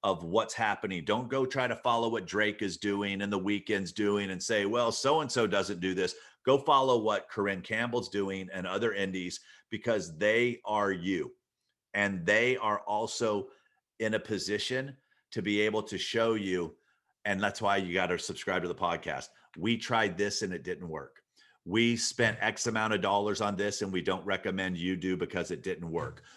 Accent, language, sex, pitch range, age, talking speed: American, English, male, 100-115 Hz, 40-59, 195 wpm